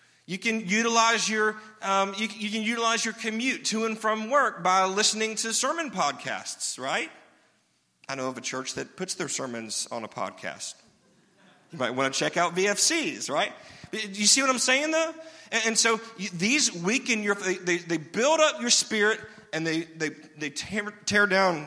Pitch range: 145-215 Hz